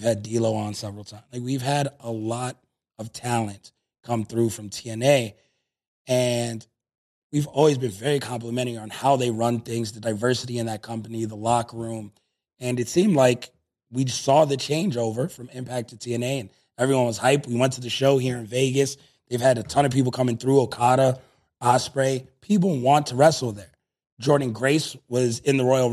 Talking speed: 185 wpm